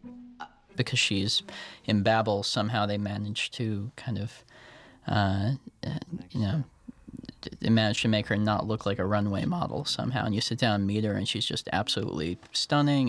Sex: male